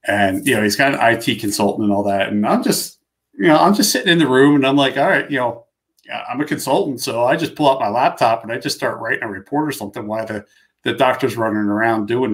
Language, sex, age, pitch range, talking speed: English, male, 40-59, 105-135 Hz, 275 wpm